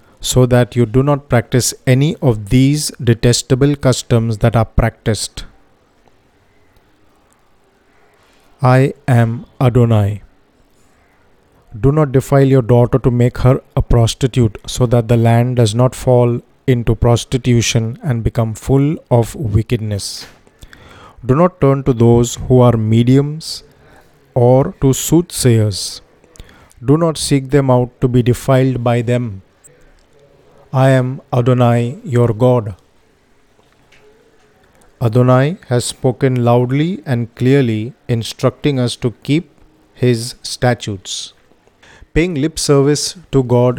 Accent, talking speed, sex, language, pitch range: native, 115 wpm, male, Hindi, 115-135 Hz